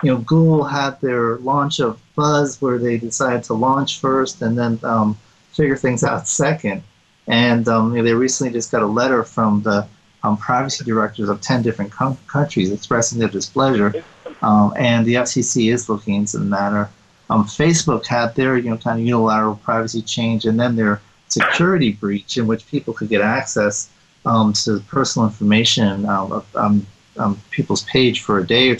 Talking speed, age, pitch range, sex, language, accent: 175 wpm, 30-49, 105-130 Hz, male, English, American